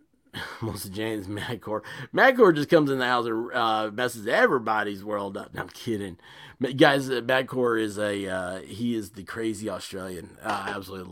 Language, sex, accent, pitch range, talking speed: English, male, American, 105-150 Hz, 175 wpm